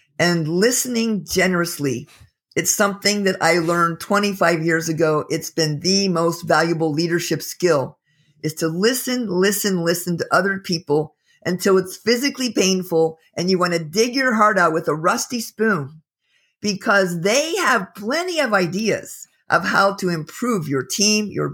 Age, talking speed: 50-69, 155 wpm